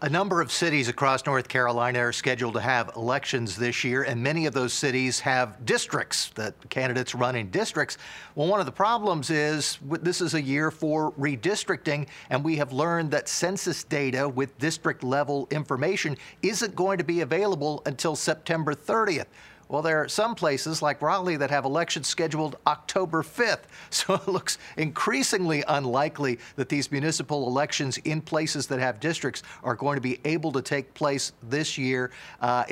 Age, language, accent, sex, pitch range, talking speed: 50-69, English, American, male, 135-160 Hz, 170 wpm